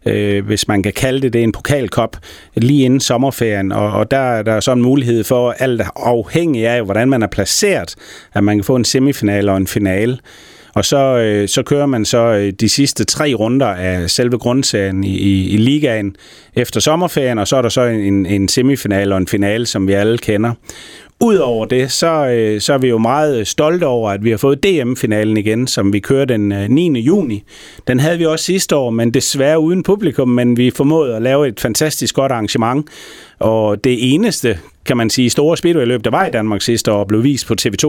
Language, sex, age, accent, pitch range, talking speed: Danish, male, 30-49, native, 105-135 Hz, 205 wpm